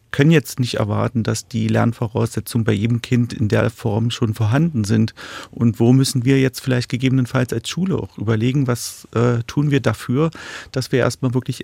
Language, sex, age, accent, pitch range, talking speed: German, male, 40-59, German, 105-130 Hz, 185 wpm